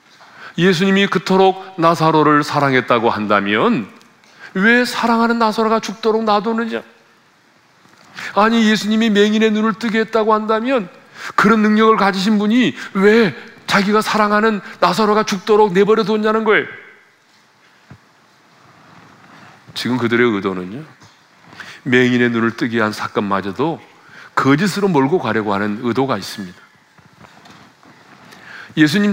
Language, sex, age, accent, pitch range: Korean, male, 40-59, native, 135-215 Hz